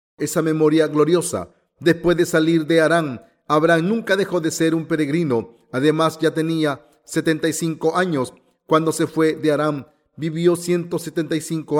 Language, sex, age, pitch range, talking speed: Spanish, male, 40-59, 150-175 Hz, 135 wpm